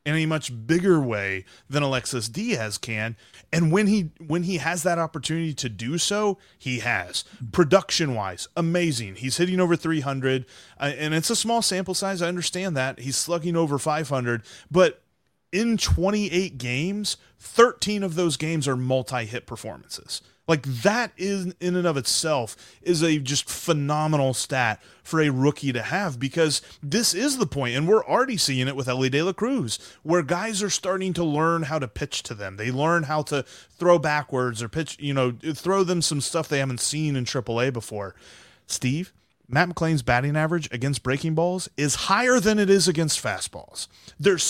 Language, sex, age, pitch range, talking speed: English, male, 30-49, 125-170 Hz, 180 wpm